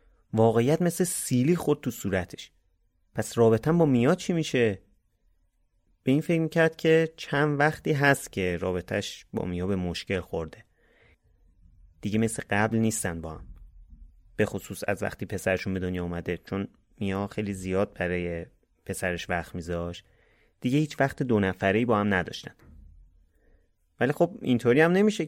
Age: 30-49